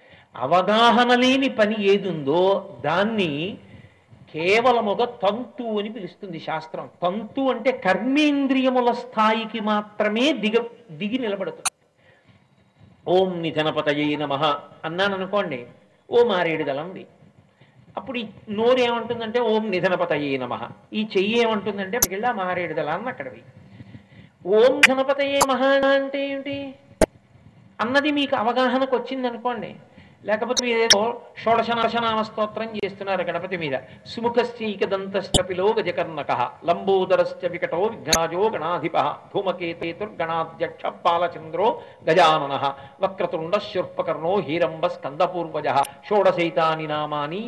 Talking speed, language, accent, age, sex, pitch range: 85 wpm, Telugu, native, 50-69, male, 170-235 Hz